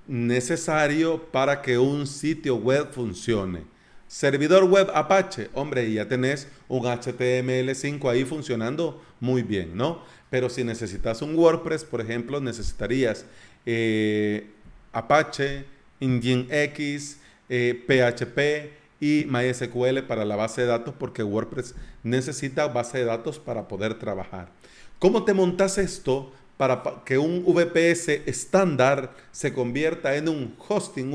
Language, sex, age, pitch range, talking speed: Spanish, male, 40-59, 120-160 Hz, 120 wpm